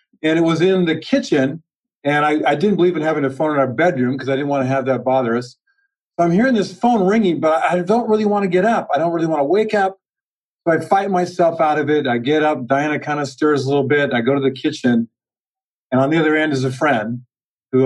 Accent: American